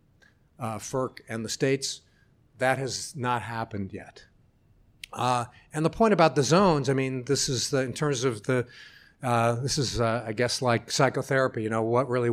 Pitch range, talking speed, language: 120-145 Hz, 185 wpm, English